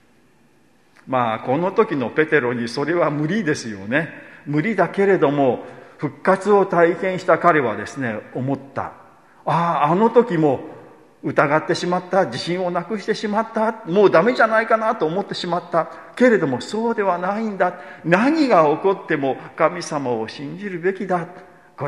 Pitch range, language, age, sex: 130-180 Hz, Japanese, 50-69, male